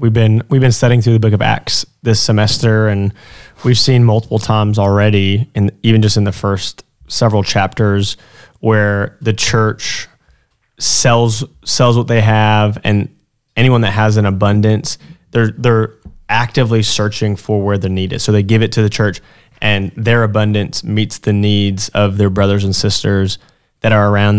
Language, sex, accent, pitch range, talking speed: English, male, American, 100-120 Hz, 170 wpm